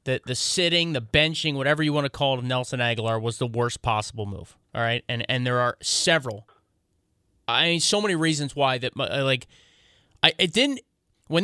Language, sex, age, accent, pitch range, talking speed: English, male, 30-49, American, 130-190 Hz, 200 wpm